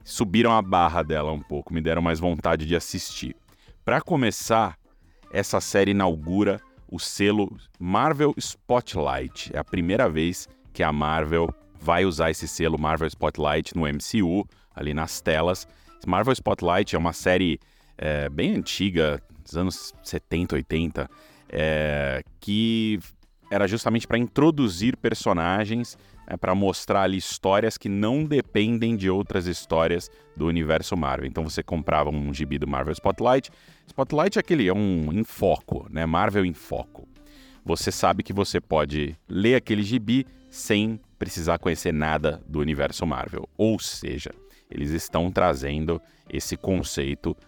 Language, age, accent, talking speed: Portuguese, 30-49, Brazilian, 140 wpm